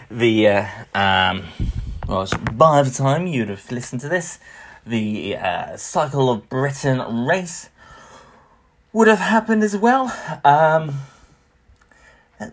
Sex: male